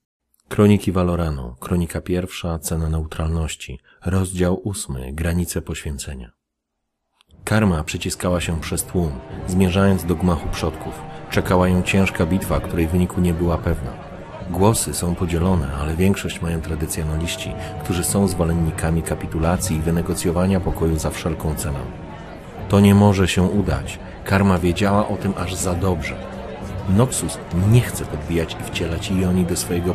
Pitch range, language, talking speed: 80-95 Hz, Polish, 130 wpm